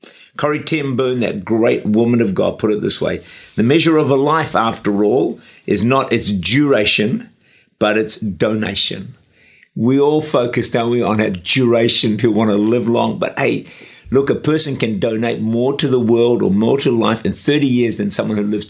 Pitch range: 105-140 Hz